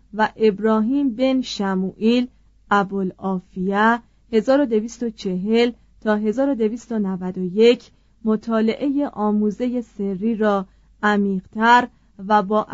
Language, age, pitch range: Persian, 30-49, 195-245 Hz